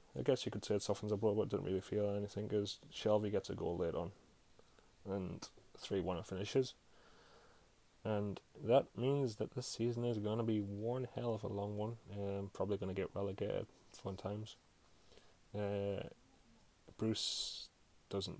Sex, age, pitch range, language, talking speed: male, 20-39, 95-110 Hz, English, 175 wpm